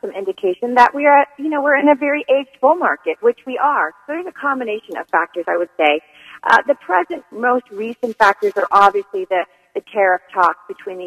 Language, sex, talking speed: English, female, 215 wpm